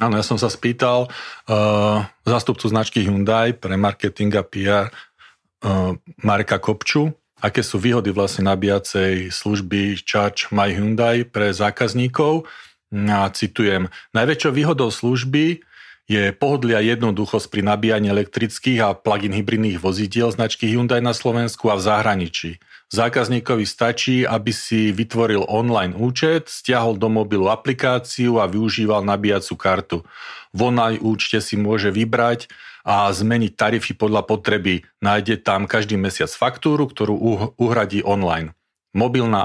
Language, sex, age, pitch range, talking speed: Slovak, male, 40-59, 100-115 Hz, 130 wpm